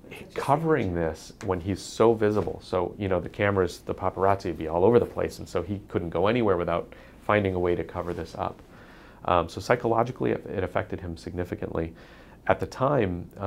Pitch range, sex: 85-105 Hz, male